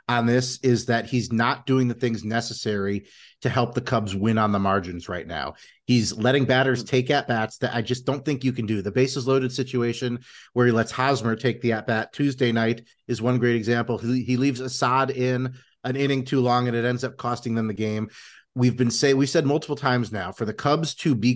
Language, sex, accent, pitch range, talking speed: English, male, American, 115-130 Hz, 230 wpm